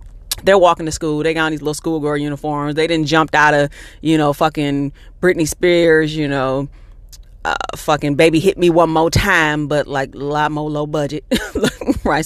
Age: 30-49